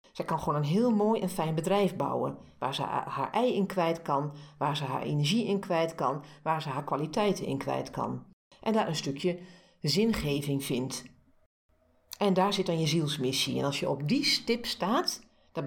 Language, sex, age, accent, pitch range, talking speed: Dutch, female, 50-69, Dutch, 140-195 Hz, 195 wpm